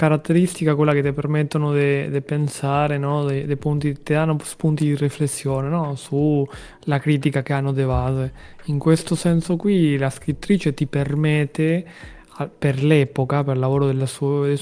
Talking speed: 145 wpm